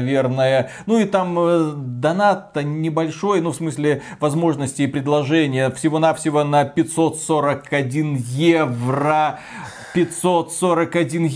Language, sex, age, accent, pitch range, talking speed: Russian, male, 30-49, native, 145-195 Hz, 85 wpm